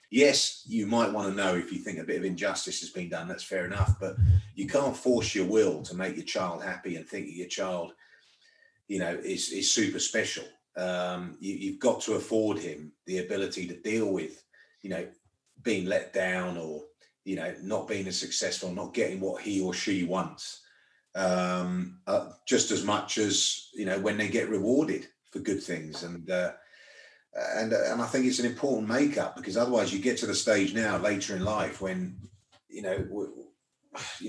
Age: 30-49